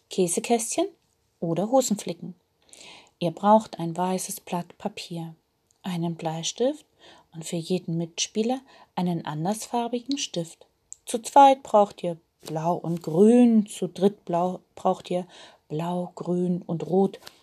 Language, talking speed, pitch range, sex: German, 115 wpm, 165-220 Hz, female